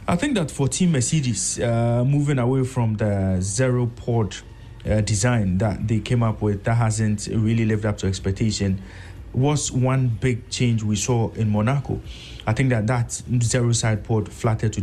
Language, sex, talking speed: English, male, 180 wpm